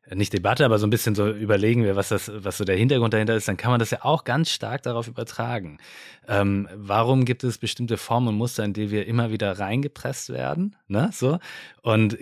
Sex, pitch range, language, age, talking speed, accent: male, 95-115 Hz, German, 20-39, 220 wpm, German